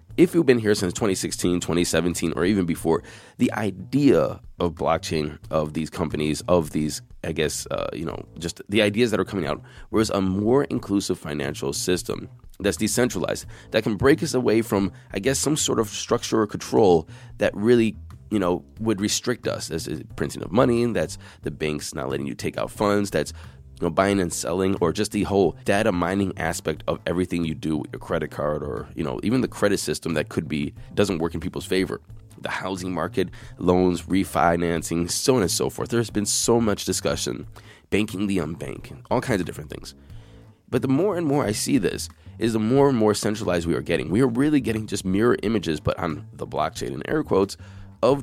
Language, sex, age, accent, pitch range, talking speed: English, male, 20-39, American, 85-110 Hz, 205 wpm